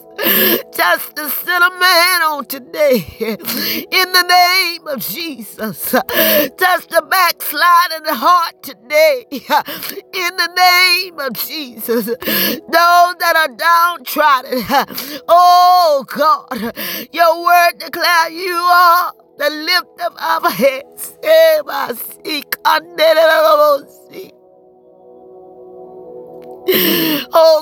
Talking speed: 100 wpm